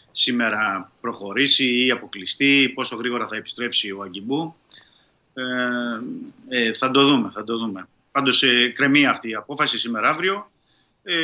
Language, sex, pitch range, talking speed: Greek, male, 115-150 Hz, 135 wpm